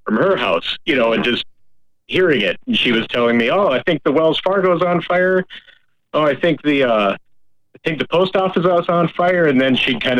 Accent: American